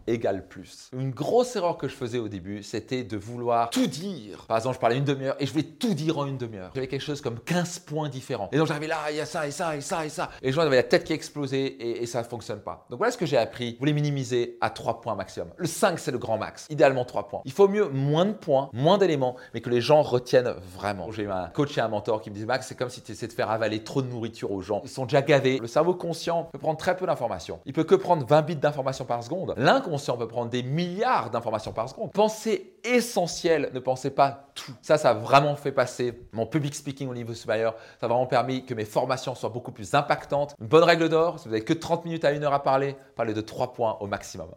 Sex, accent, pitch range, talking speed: male, French, 120-160 Hz, 275 wpm